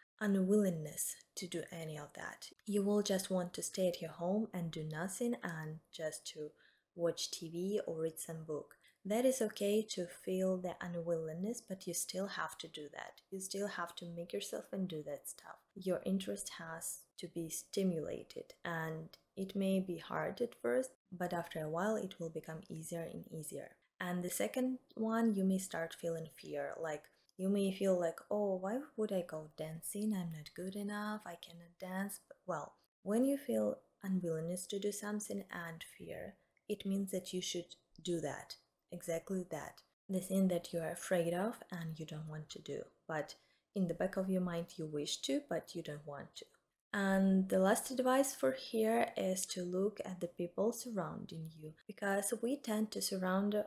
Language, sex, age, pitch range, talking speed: English, female, 20-39, 165-205 Hz, 185 wpm